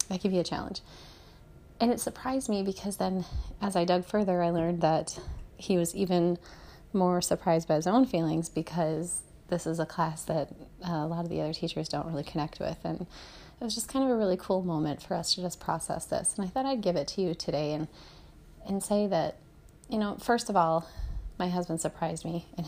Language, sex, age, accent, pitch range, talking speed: English, female, 30-49, American, 165-195 Hz, 215 wpm